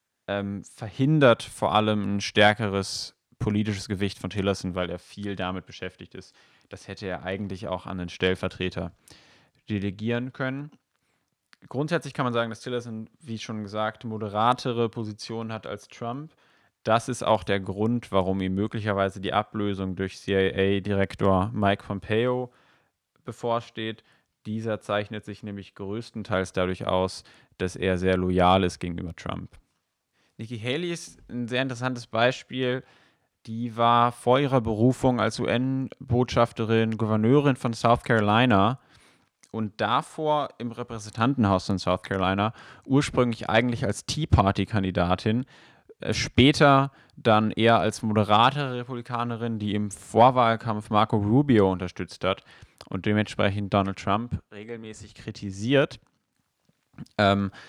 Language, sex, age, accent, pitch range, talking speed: German, male, 10-29, German, 100-120 Hz, 120 wpm